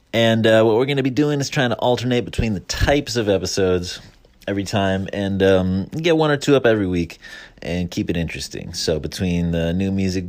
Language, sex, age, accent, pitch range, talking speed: English, male, 30-49, American, 90-110 Hz, 215 wpm